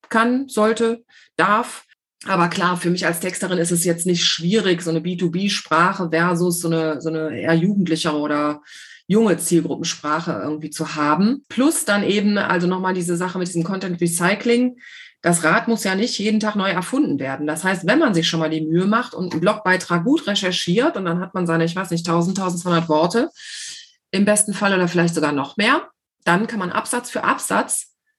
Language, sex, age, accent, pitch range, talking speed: German, female, 30-49, German, 175-225 Hz, 195 wpm